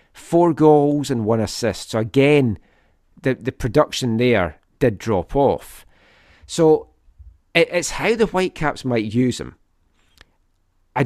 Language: English